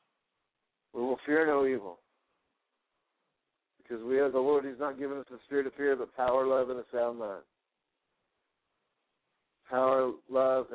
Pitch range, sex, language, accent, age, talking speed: 125-145 Hz, male, English, American, 60-79, 150 wpm